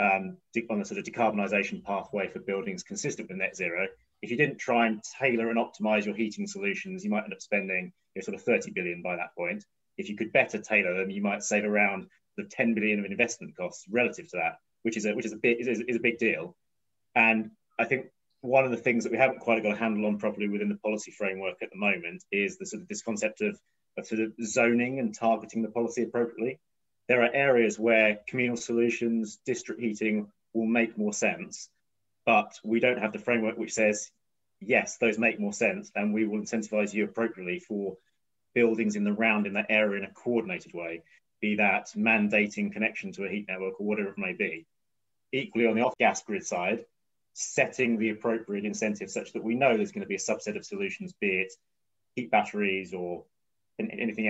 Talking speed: 215 wpm